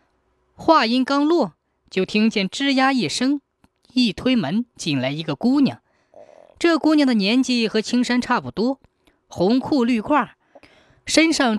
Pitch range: 185-255 Hz